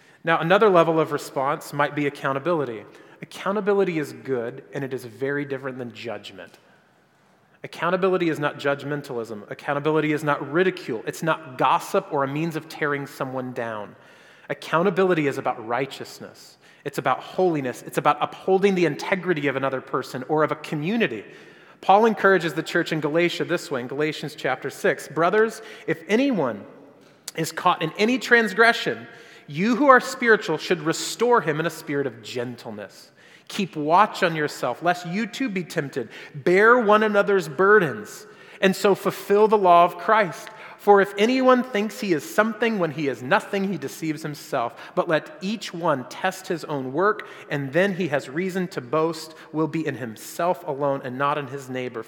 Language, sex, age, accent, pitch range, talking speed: English, male, 30-49, American, 145-195 Hz, 170 wpm